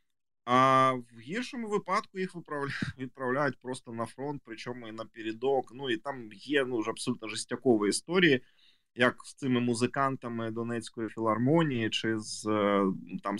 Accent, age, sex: native, 20-39, male